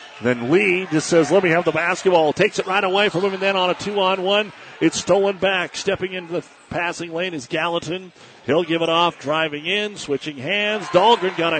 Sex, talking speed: male, 210 wpm